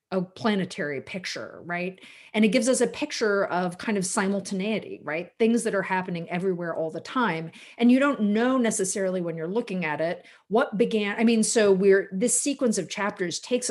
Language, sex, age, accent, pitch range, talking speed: English, female, 40-59, American, 175-220 Hz, 195 wpm